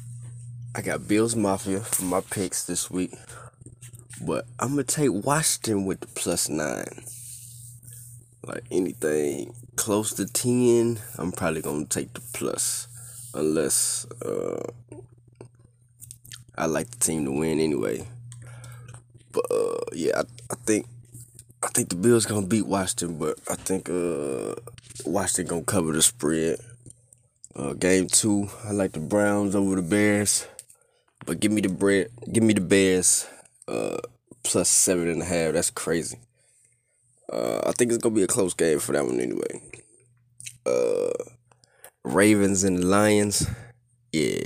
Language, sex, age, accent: English, male, 20-39, American